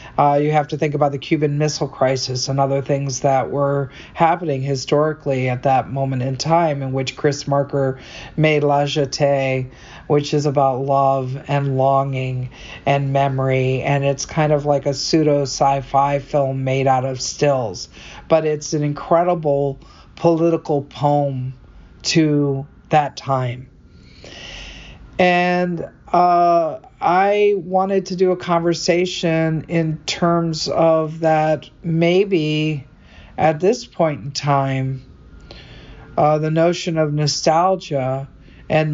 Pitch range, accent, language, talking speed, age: 135-155 Hz, American, English, 125 wpm, 50-69